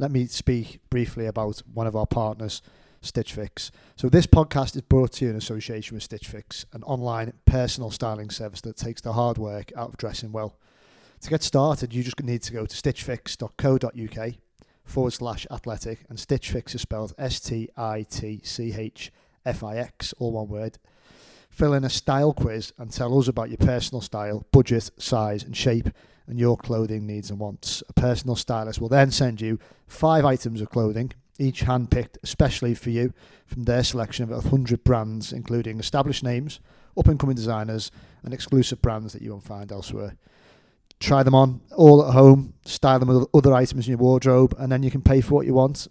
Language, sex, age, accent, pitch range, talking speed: English, male, 40-59, British, 110-130 Hz, 180 wpm